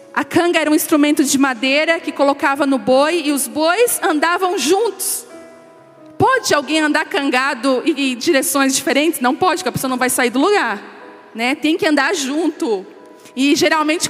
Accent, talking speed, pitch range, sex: Brazilian, 170 wpm, 295-370 Hz, female